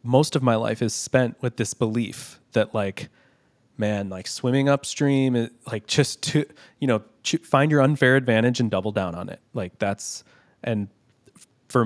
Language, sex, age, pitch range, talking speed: English, male, 20-39, 110-135 Hz, 165 wpm